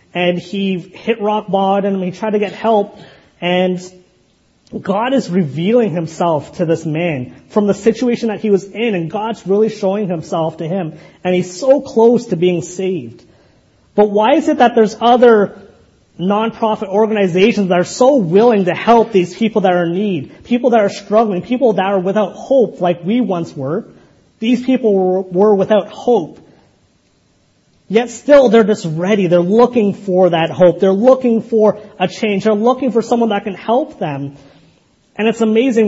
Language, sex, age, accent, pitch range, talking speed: English, male, 30-49, American, 180-230 Hz, 175 wpm